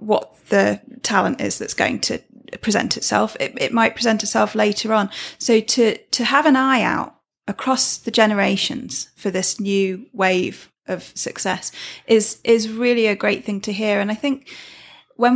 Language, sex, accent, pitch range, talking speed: English, female, British, 195-230 Hz, 170 wpm